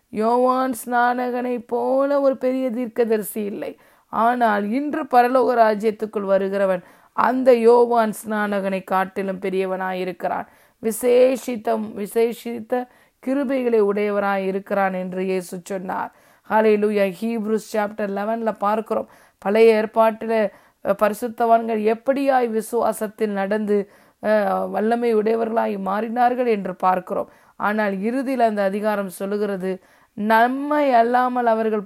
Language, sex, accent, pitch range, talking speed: Tamil, female, native, 200-240 Hz, 95 wpm